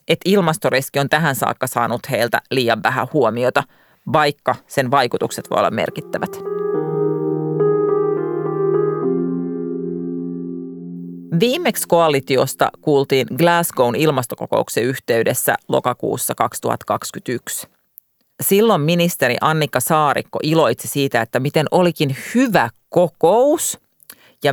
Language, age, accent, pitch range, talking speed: Finnish, 40-59, native, 125-170 Hz, 90 wpm